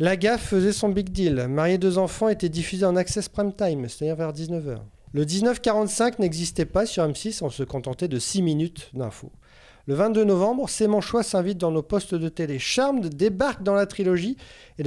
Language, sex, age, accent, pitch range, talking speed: French, male, 40-59, French, 145-205 Hz, 220 wpm